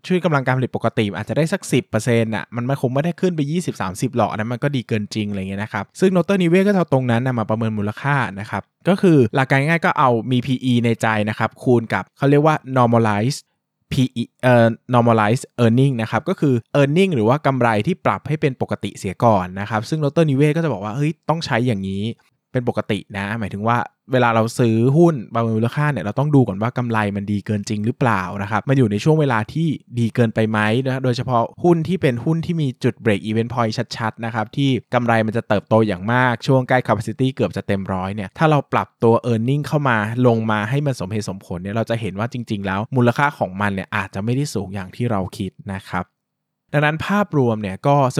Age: 20-39